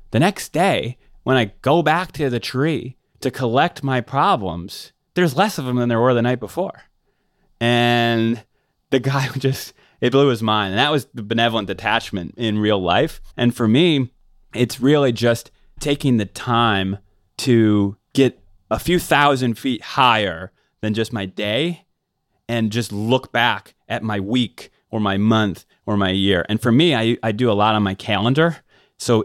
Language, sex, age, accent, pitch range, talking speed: English, male, 30-49, American, 100-125 Hz, 175 wpm